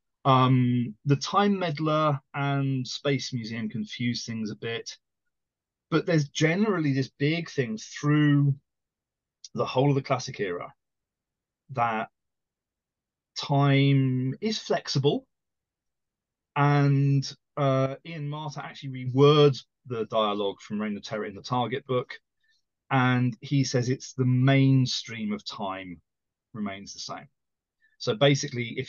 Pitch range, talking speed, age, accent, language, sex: 115-150 Hz, 120 wpm, 30-49, British, English, male